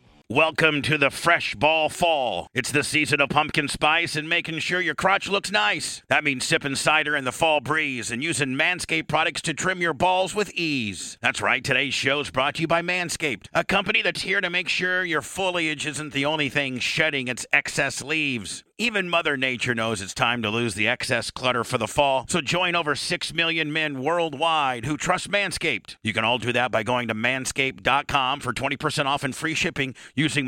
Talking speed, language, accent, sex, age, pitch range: 205 wpm, English, American, male, 50-69, 135-170 Hz